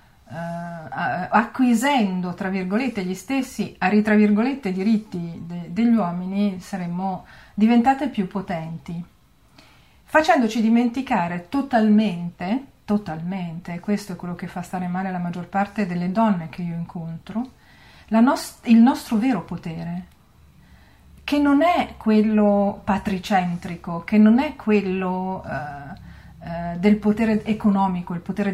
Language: Italian